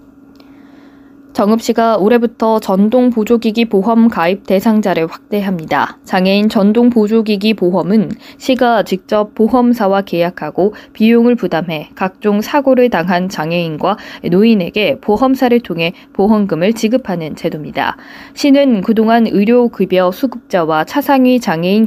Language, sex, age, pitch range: Korean, female, 20-39, 185-245 Hz